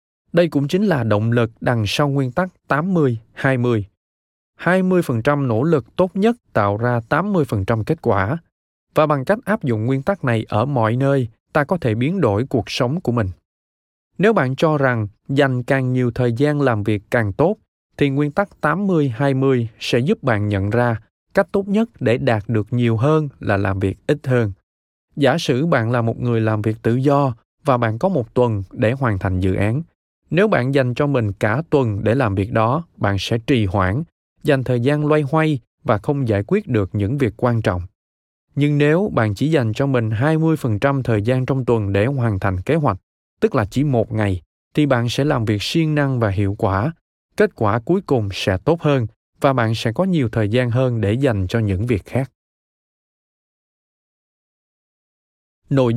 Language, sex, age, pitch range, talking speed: Vietnamese, male, 20-39, 105-145 Hz, 190 wpm